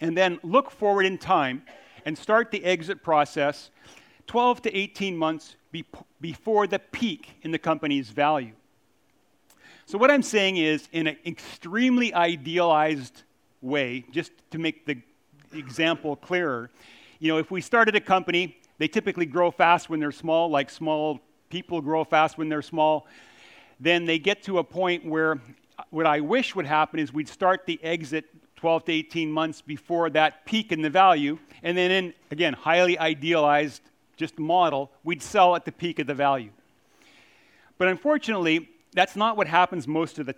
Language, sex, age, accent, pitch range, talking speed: English, male, 40-59, American, 155-185 Hz, 165 wpm